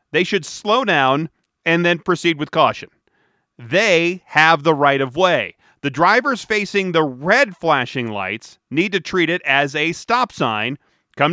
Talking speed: 165 wpm